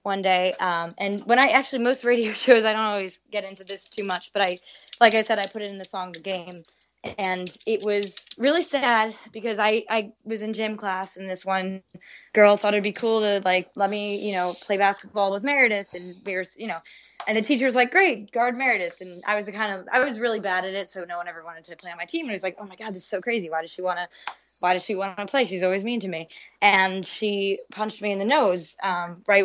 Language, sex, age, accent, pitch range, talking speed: English, female, 10-29, American, 185-225 Hz, 265 wpm